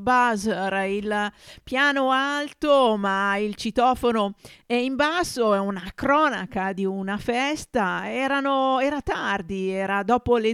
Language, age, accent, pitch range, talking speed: Italian, 50-69, native, 195-255 Hz, 120 wpm